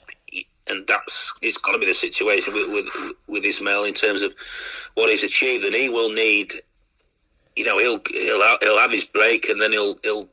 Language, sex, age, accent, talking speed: English, male, 40-59, British, 210 wpm